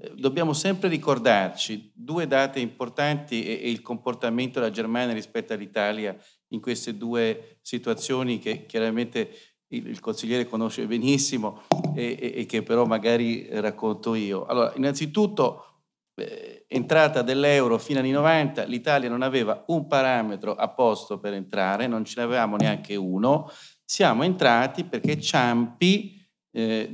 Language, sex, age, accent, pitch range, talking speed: Italian, male, 40-59, native, 110-145 Hz, 125 wpm